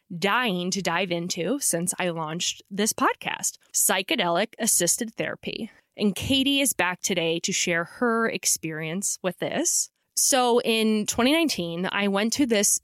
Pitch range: 175-225 Hz